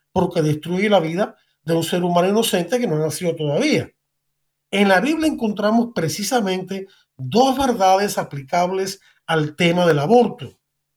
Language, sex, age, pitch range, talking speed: Spanish, male, 50-69, 165-230 Hz, 140 wpm